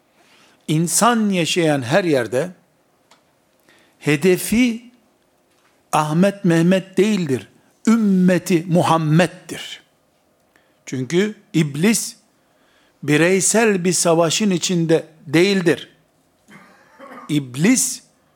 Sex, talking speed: male, 60 wpm